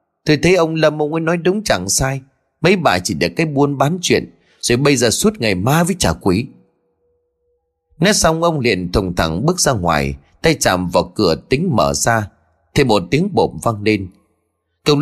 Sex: male